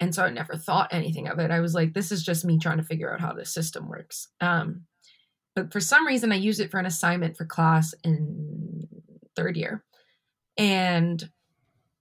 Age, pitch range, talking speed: 20-39, 165-200 Hz, 200 wpm